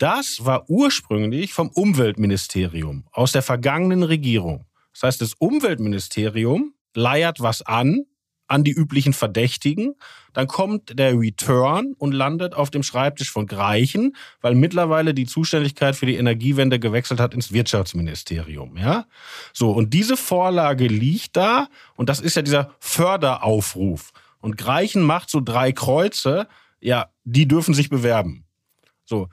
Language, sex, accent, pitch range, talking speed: German, male, German, 120-170 Hz, 135 wpm